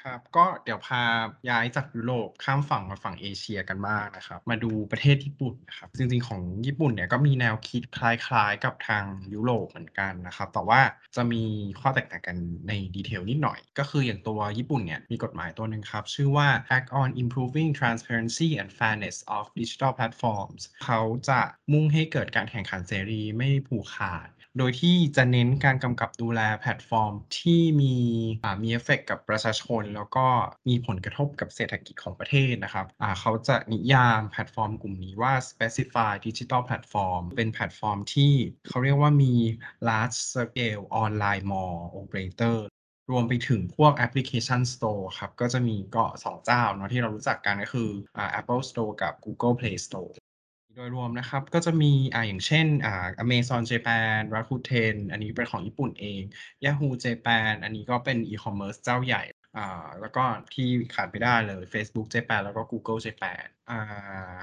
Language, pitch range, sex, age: Thai, 105-130 Hz, male, 20-39